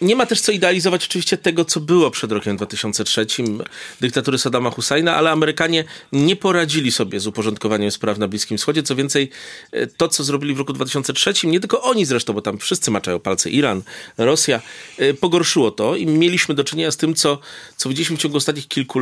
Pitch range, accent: 125-165 Hz, native